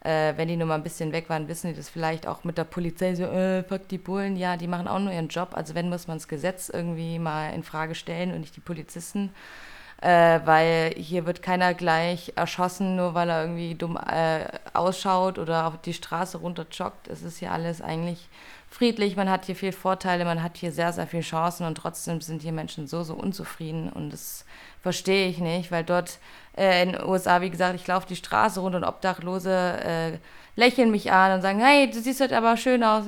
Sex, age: female, 20-39